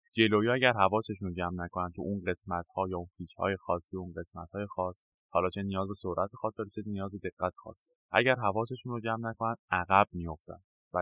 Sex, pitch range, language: male, 95-125 Hz, Persian